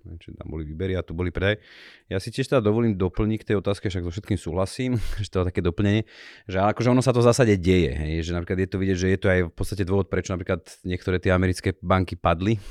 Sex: male